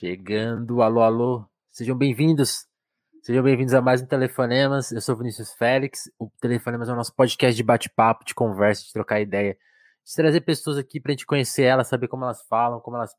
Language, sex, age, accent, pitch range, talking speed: Portuguese, male, 20-39, Brazilian, 115-145 Hz, 190 wpm